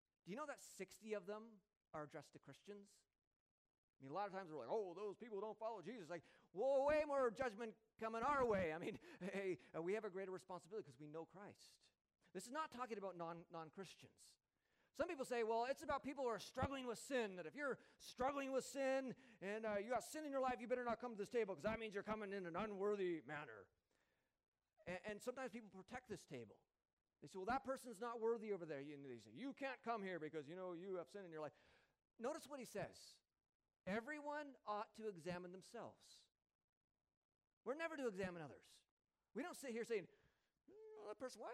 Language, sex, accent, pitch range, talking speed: English, male, American, 180-245 Hz, 210 wpm